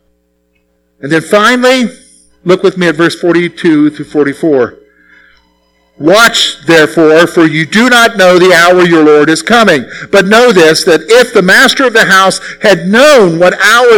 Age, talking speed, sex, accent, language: 50-69, 165 wpm, male, American, English